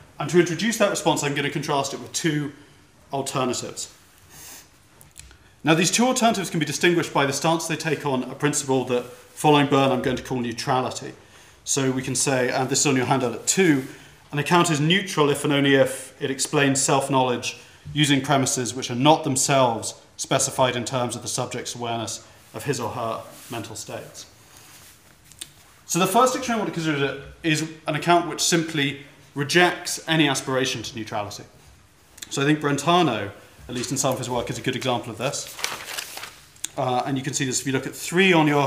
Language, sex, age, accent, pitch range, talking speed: English, male, 30-49, British, 125-160 Hz, 195 wpm